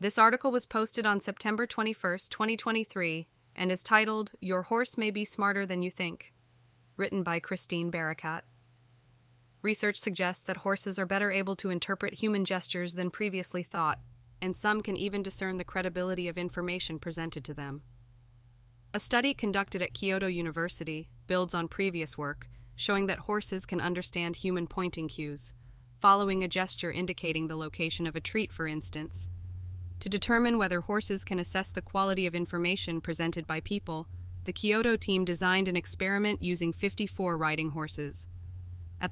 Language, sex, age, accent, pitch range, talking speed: English, female, 20-39, American, 155-195 Hz, 155 wpm